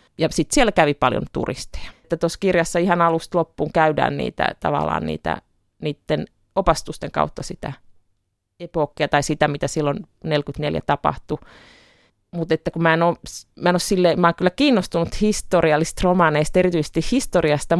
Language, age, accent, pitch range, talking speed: Finnish, 30-49, native, 145-175 Hz, 130 wpm